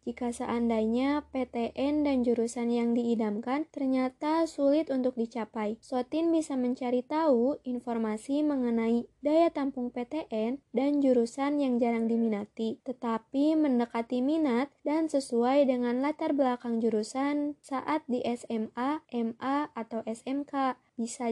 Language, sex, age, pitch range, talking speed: Indonesian, female, 20-39, 235-280 Hz, 115 wpm